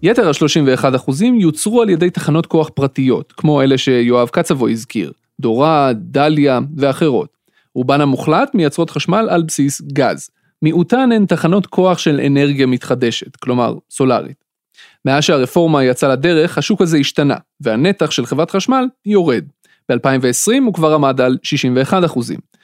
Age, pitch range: 30-49, 135-180 Hz